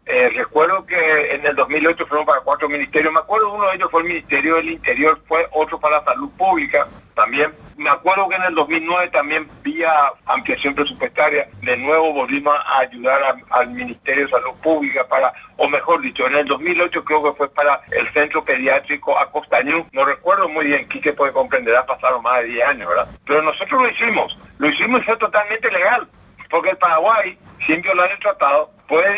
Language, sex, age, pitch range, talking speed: Spanish, male, 60-79, 145-200 Hz, 200 wpm